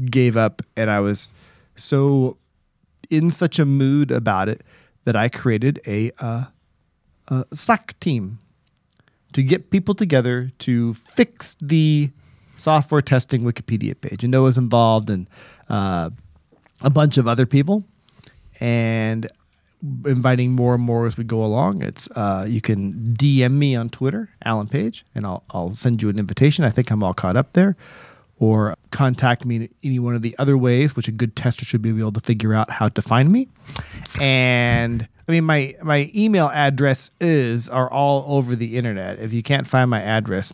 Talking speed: 175 wpm